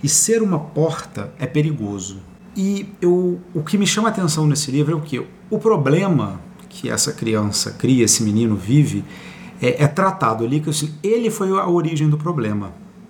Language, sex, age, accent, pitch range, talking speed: Portuguese, male, 50-69, Brazilian, 145-185 Hz, 185 wpm